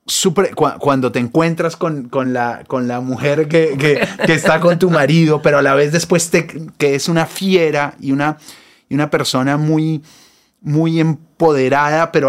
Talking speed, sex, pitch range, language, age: 145 wpm, male, 125-160 Hz, Spanish, 30-49